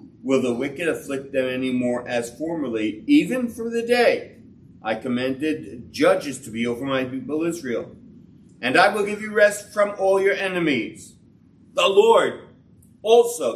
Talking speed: 155 wpm